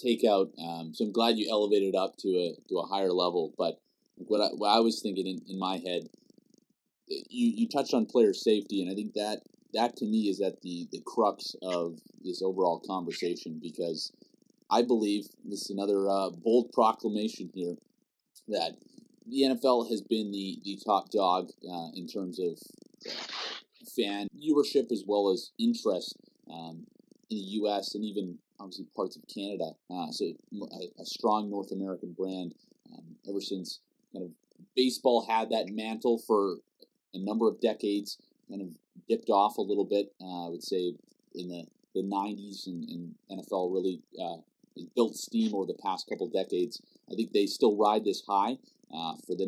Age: 30-49